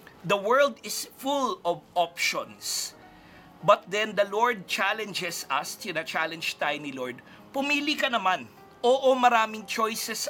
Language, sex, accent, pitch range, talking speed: Filipino, male, native, 180-235 Hz, 135 wpm